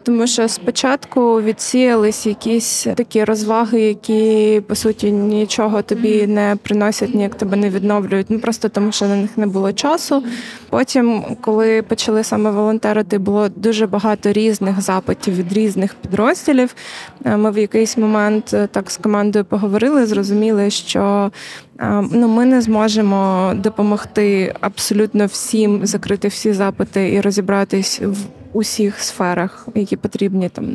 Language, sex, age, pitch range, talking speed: Ukrainian, female, 20-39, 200-225 Hz, 135 wpm